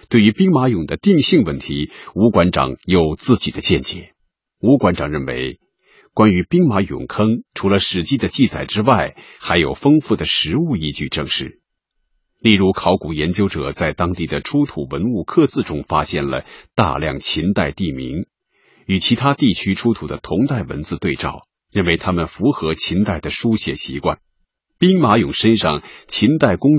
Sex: male